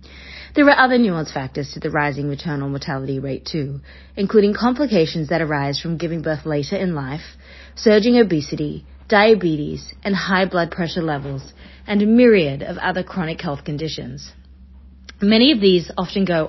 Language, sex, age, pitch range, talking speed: English, female, 40-59, 140-195 Hz, 155 wpm